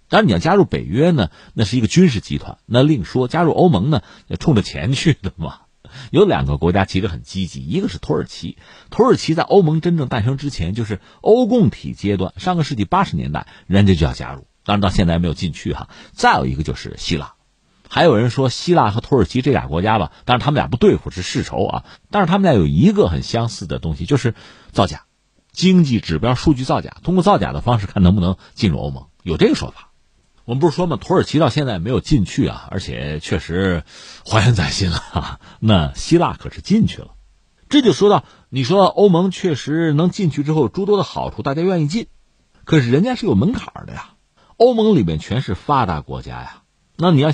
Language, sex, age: Chinese, male, 50-69